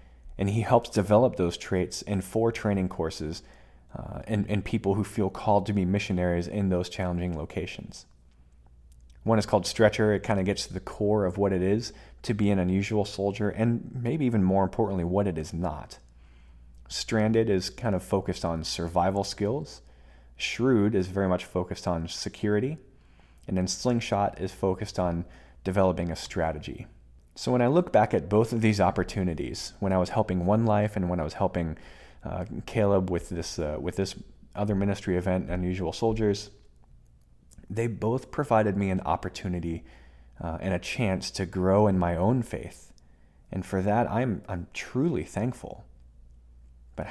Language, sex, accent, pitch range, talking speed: English, male, American, 80-105 Hz, 170 wpm